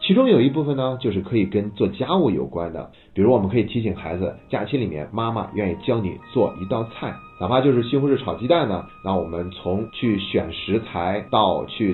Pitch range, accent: 95-120 Hz, native